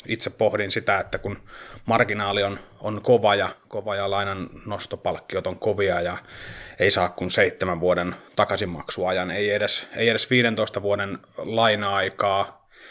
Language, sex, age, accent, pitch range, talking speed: Finnish, male, 30-49, native, 95-110 Hz, 140 wpm